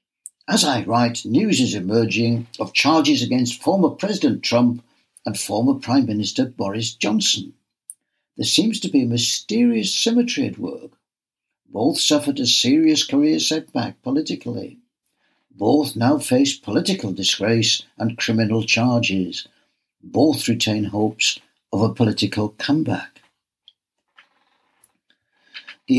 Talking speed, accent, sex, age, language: 115 wpm, British, male, 60-79, English